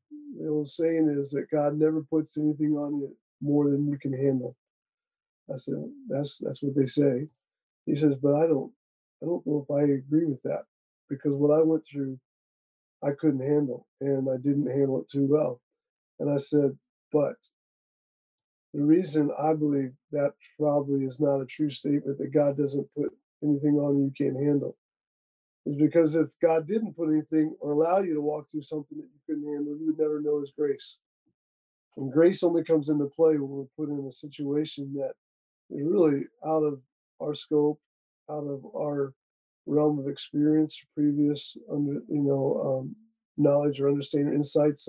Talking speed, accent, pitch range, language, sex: 180 wpm, American, 140-155 Hz, English, male